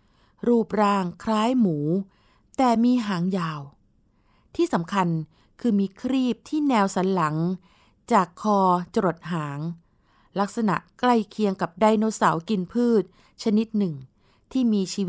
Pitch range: 175-220 Hz